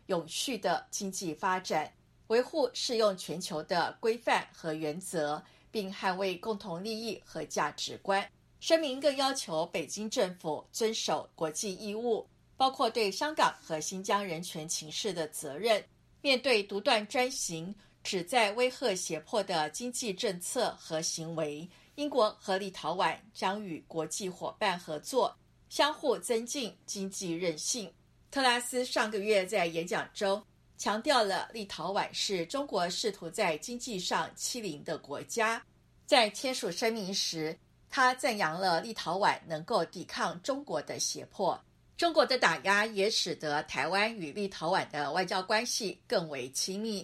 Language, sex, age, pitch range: Chinese, female, 50-69, 165-230 Hz